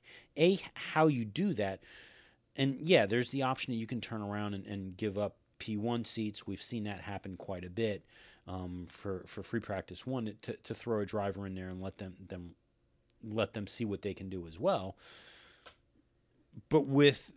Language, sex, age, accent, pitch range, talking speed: English, male, 40-59, American, 100-135 Hz, 195 wpm